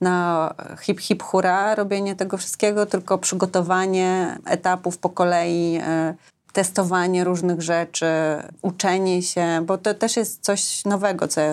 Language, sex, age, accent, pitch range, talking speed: Polish, female, 30-49, native, 170-195 Hz, 125 wpm